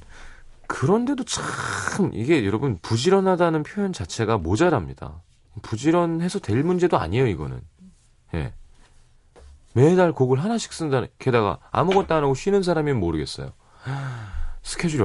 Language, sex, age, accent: Korean, male, 30-49, native